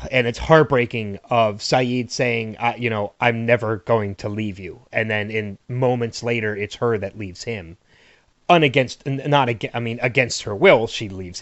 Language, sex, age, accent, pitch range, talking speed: English, male, 30-49, American, 105-130 Hz, 185 wpm